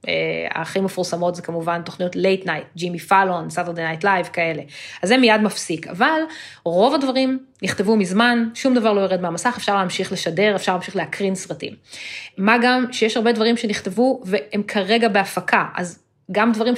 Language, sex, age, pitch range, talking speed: Hebrew, female, 20-39, 180-230 Hz, 165 wpm